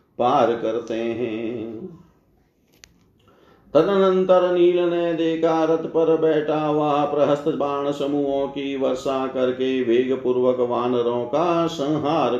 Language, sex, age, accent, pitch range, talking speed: Hindi, male, 50-69, native, 115-145 Hz, 100 wpm